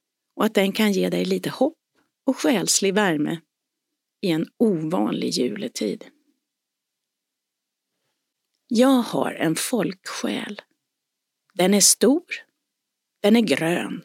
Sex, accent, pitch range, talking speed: female, native, 205-270 Hz, 105 wpm